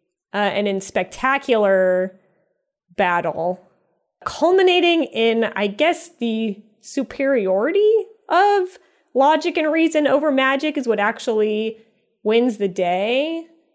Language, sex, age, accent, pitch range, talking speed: English, female, 20-39, American, 190-255 Hz, 100 wpm